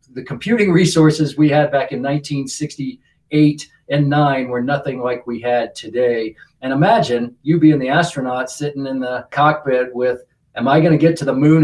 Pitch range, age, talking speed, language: 125-145 Hz, 40-59, 180 wpm, English